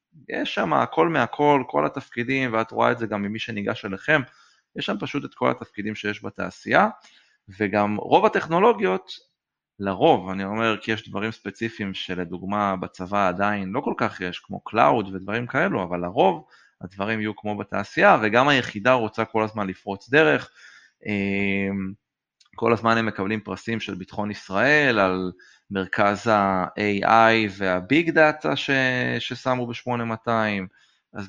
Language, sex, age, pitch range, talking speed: Hebrew, male, 20-39, 100-125 Hz, 135 wpm